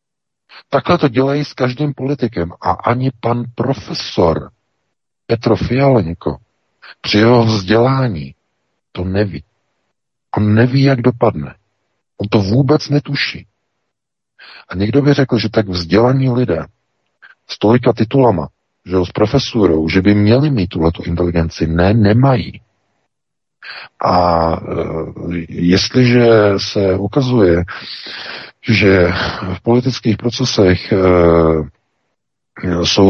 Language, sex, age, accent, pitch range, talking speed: Czech, male, 50-69, native, 90-110 Hz, 100 wpm